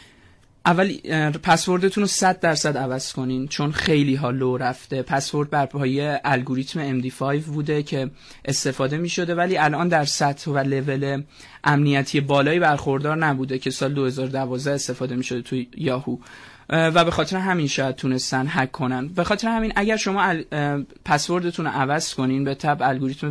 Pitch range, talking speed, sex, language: 135-165 Hz, 150 wpm, male, Persian